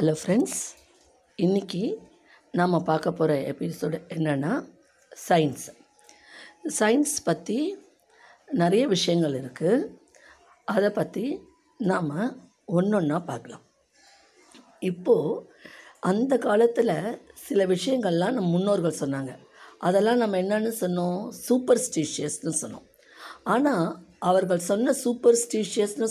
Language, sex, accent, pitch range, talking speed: Tamil, female, native, 160-230 Hz, 90 wpm